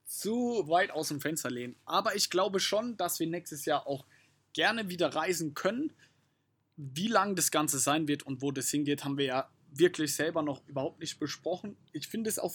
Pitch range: 140-165 Hz